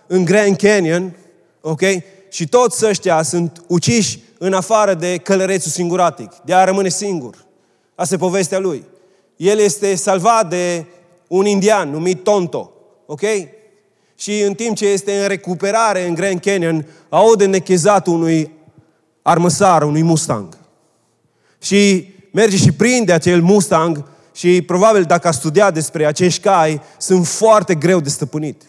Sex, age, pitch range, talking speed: male, 30-49, 170-200 Hz, 140 wpm